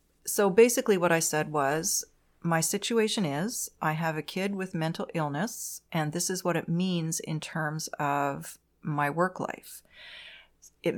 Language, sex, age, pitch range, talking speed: English, female, 30-49, 155-190 Hz, 160 wpm